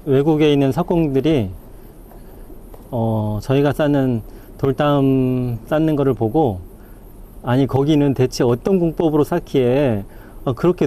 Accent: Korean